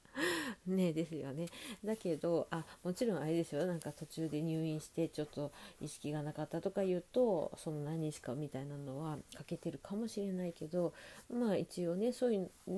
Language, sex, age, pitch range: Japanese, female, 40-59, 150-195 Hz